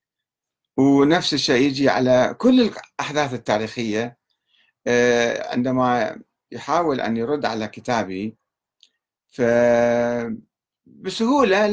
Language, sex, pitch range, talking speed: Arabic, male, 110-170 Hz, 75 wpm